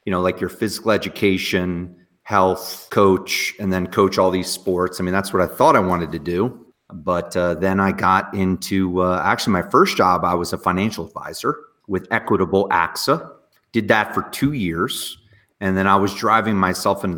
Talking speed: 190 wpm